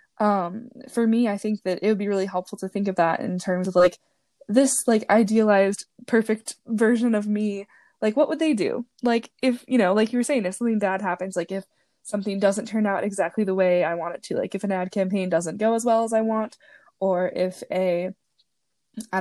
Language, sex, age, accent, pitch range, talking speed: English, female, 10-29, American, 190-235 Hz, 225 wpm